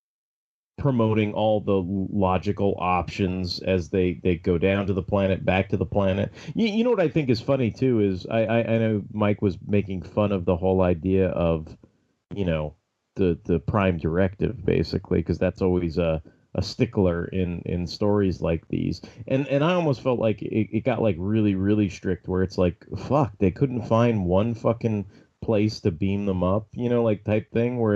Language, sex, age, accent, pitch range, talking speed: English, male, 30-49, American, 95-115 Hz, 195 wpm